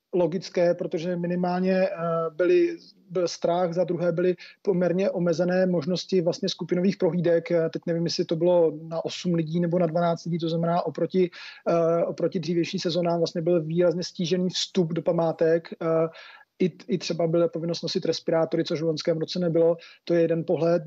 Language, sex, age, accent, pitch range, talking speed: Czech, male, 30-49, native, 170-185 Hz, 160 wpm